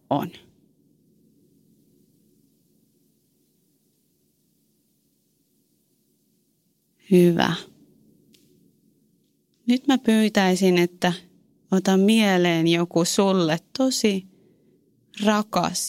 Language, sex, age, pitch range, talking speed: Finnish, female, 30-49, 165-200 Hz, 45 wpm